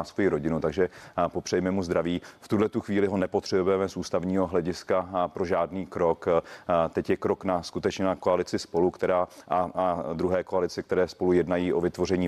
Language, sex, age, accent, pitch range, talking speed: Czech, male, 40-59, native, 85-90 Hz, 170 wpm